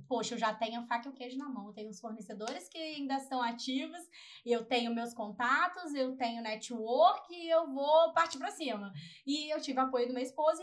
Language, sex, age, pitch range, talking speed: Portuguese, female, 10-29, 235-280 Hz, 220 wpm